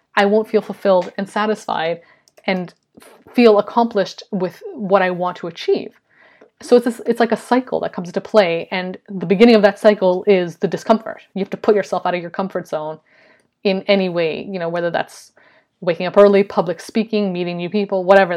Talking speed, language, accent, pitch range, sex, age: 200 wpm, English, American, 175-205 Hz, female, 20-39